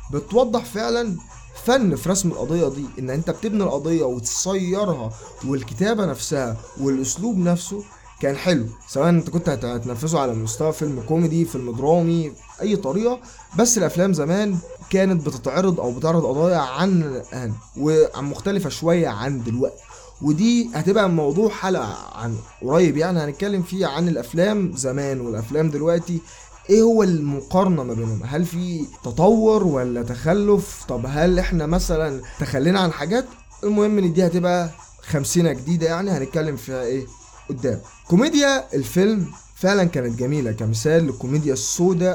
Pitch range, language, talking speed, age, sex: 130-180 Hz, Arabic, 135 wpm, 20-39, male